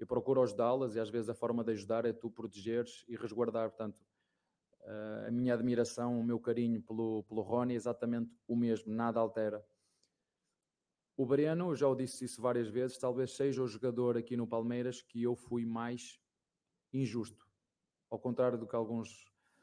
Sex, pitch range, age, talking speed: male, 105-120 Hz, 20-39, 170 wpm